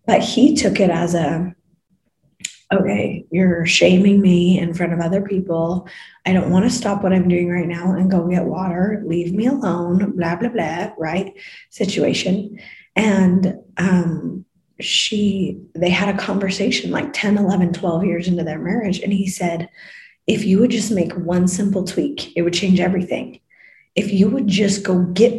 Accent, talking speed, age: American, 175 wpm, 30-49